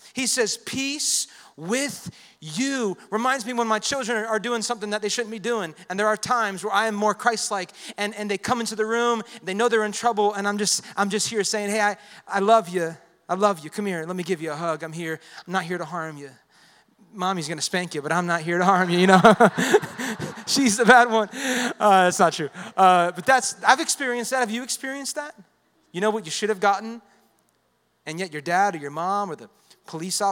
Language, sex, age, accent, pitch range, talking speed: English, male, 30-49, American, 165-220 Hz, 230 wpm